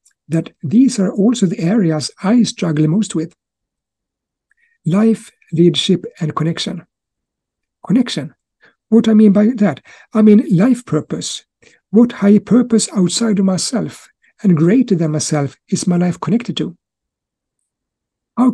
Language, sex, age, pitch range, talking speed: English, male, 60-79, 165-220 Hz, 130 wpm